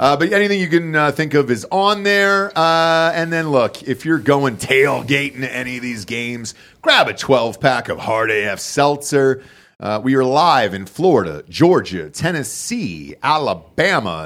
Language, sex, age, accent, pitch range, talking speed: English, male, 40-59, American, 120-170 Hz, 170 wpm